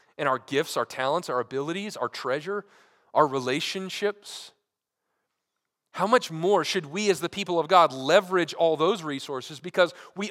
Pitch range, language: 130-190 Hz, English